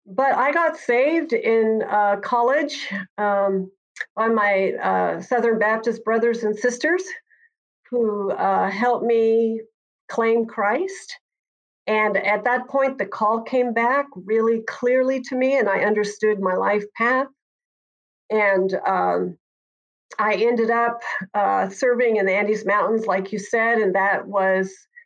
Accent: American